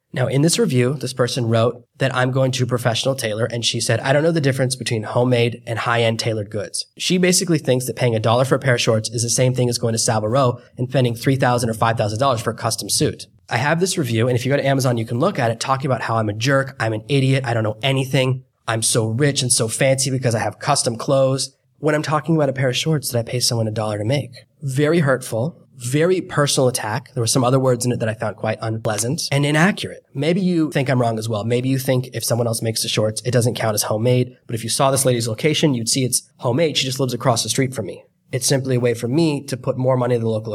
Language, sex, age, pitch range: English, male, 20-39, 115-135 Hz